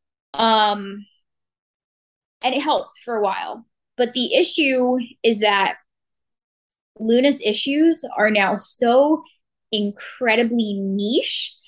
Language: English